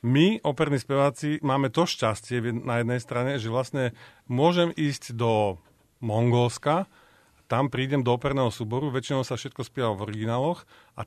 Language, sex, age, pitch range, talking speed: Slovak, male, 40-59, 115-145 Hz, 145 wpm